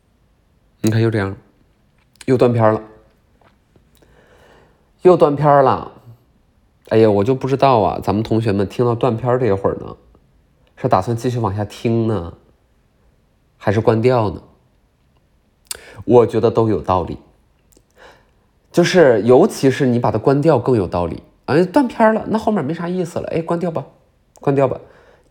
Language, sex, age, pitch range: Chinese, male, 30-49, 100-135 Hz